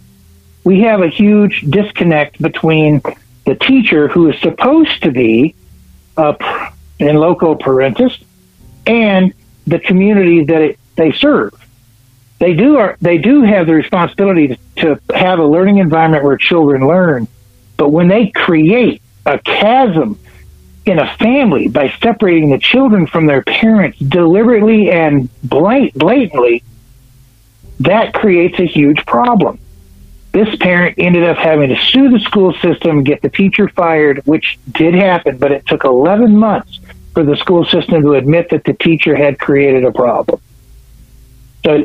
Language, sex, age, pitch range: English, male, 60-79, 140-195 Hz